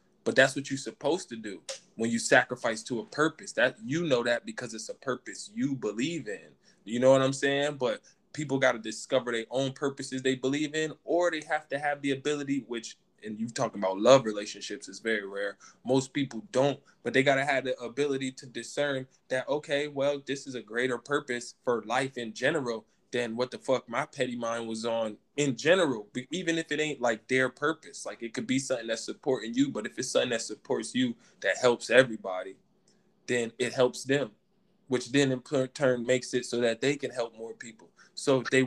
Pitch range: 120-145 Hz